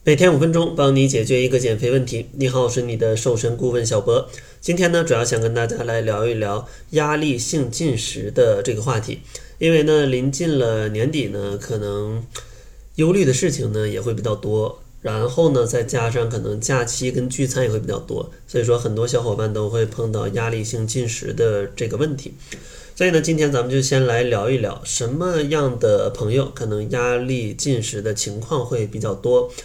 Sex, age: male, 20-39